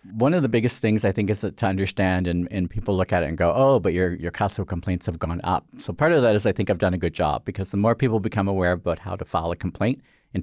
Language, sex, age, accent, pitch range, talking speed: English, male, 40-59, American, 95-115 Hz, 310 wpm